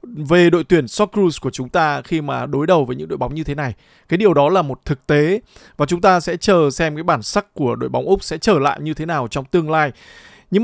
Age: 20-39